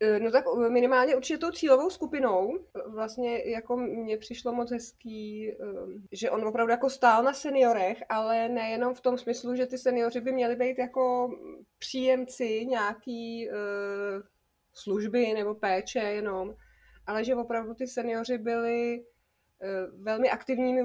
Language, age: Czech, 20-39